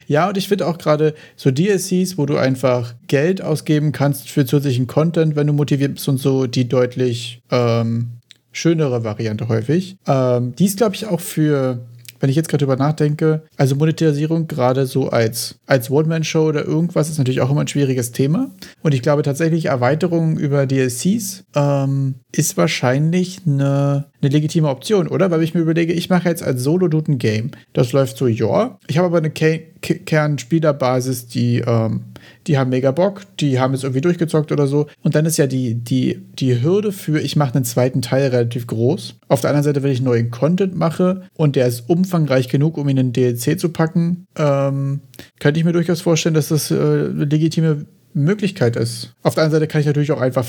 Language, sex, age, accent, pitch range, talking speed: German, male, 40-59, German, 130-165 Hz, 195 wpm